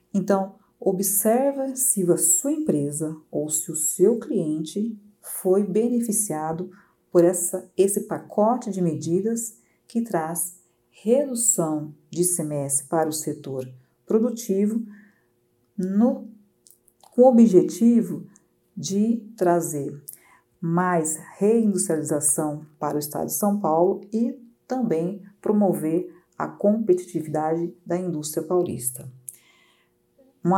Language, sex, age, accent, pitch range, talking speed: Portuguese, female, 50-69, Brazilian, 155-205 Hz, 95 wpm